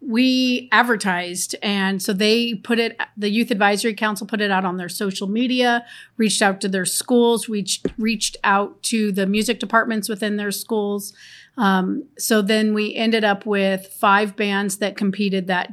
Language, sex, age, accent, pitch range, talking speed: English, female, 40-59, American, 195-225 Hz, 170 wpm